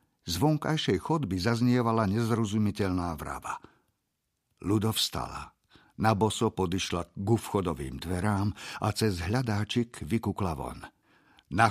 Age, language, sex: 50-69, Slovak, male